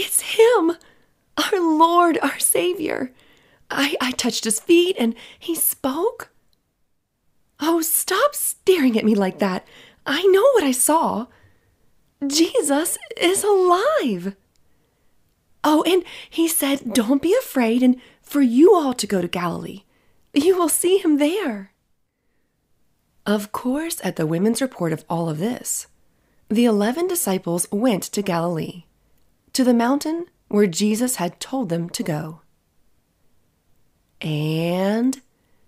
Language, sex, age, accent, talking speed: English, female, 30-49, American, 130 wpm